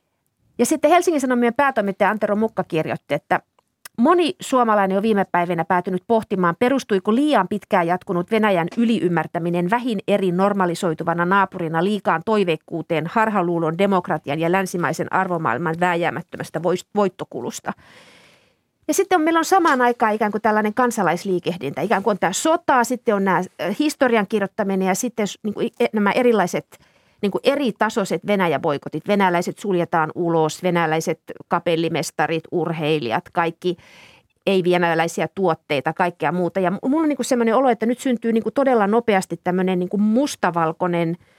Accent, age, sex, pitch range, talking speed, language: native, 30-49, female, 170-220 Hz, 135 wpm, Finnish